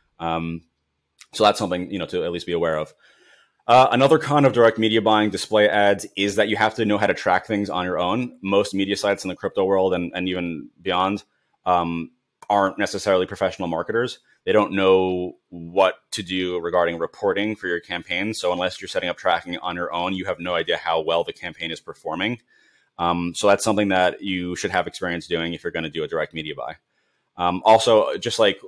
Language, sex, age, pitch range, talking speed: English, male, 30-49, 85-105 Hz, 220 wpm